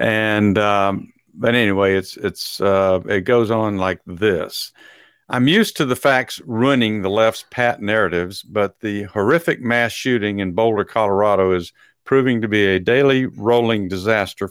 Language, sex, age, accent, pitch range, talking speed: English, male, 50-69, American, 100-125 Hz, 155 wpm